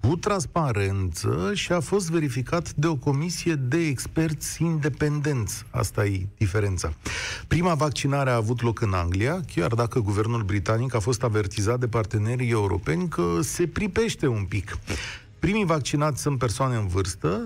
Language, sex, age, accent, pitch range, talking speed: Romanian, male, 40-59, native, 105-145 Hz, 150 wpm